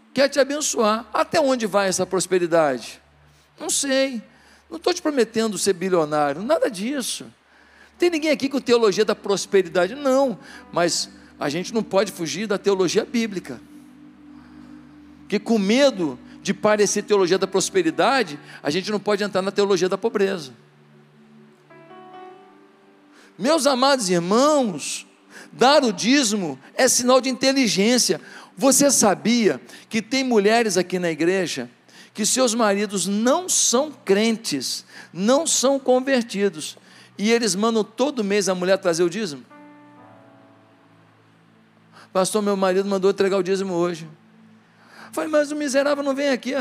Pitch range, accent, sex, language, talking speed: 185-265 Hz, Brazilian, male, Portuguese, 135 wpm